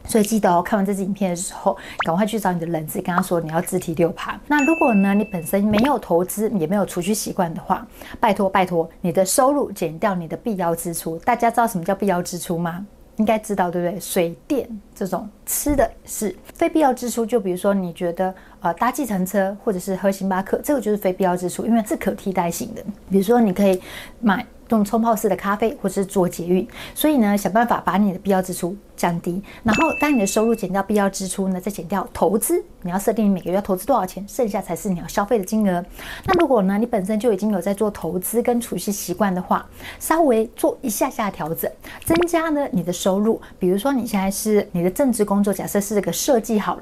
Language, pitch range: Chinese, 185-230 Hz